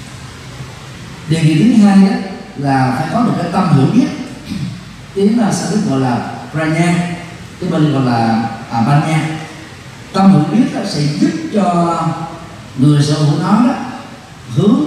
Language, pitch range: Vietnamese, 135-205 Hz